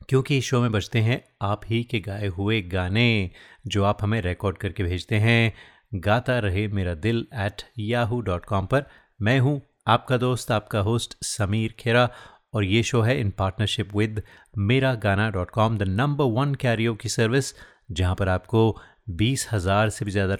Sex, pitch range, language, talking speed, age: male, 100-125 Hz, Hindi, 165 wpm, 30-49